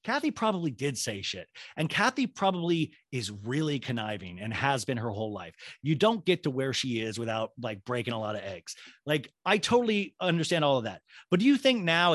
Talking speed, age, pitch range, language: 215 wpm, 30-49, 135-185 Hz, English